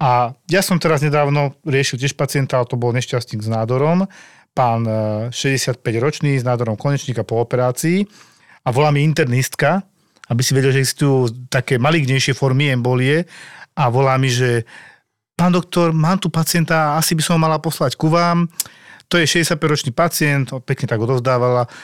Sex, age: male, 40-59